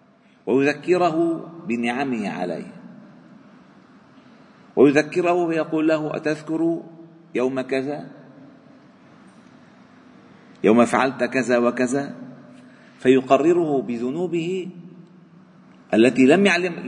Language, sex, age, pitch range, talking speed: Arabic, male, 50-69, 125-175 Hz, 65 wpm